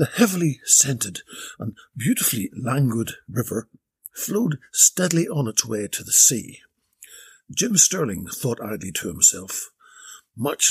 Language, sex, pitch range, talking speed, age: English, male, 115-160 Hz, 125 wpm, 60-79